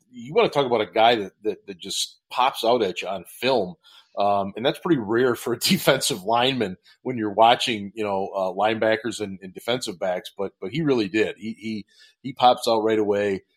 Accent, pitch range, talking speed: American, 105-130 Hz, 215 wpm